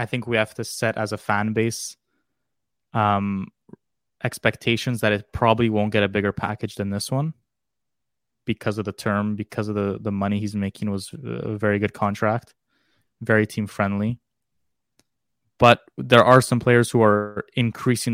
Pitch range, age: 105-120 Hz, 20-39